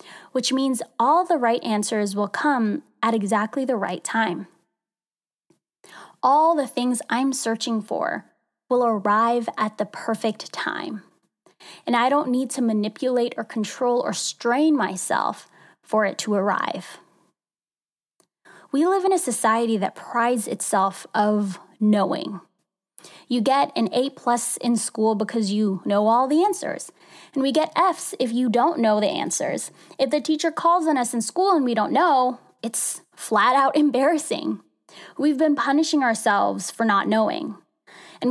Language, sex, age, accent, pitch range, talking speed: English, female, 10-29, American, 220-300 Hz, 150 wpm